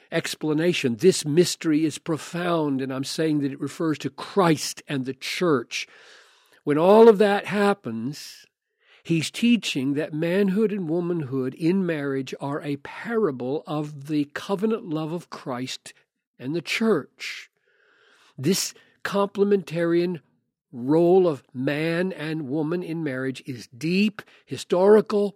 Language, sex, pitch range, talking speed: English, male, 140-185 Hz, 125 wpm